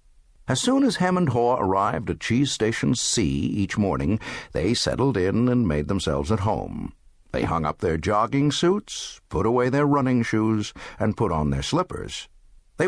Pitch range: 95-140 Hz